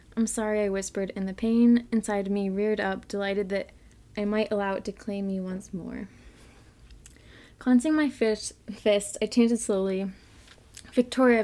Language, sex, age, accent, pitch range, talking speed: English, female, 20-39, American, 200-240 Hz, 155 wpm